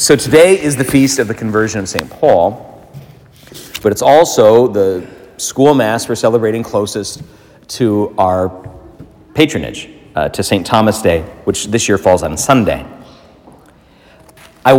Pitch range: 105-130 Hz